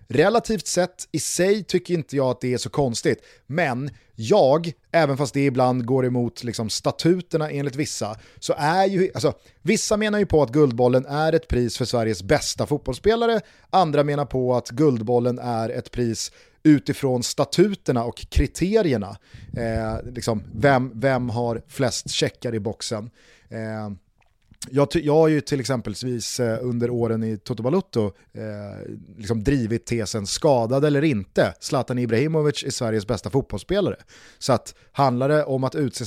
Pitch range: 115-150 Hz